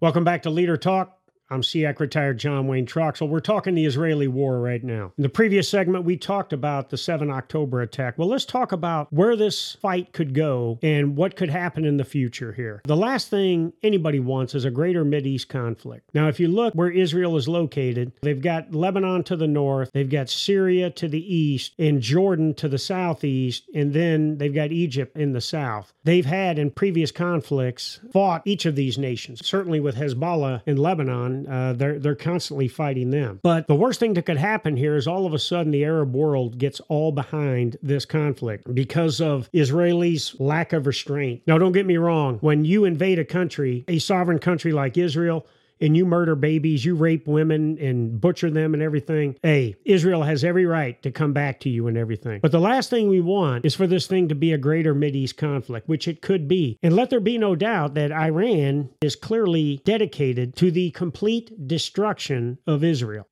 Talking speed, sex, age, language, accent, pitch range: 200 wpm, male, 40-59, English, American, 140-180 Hz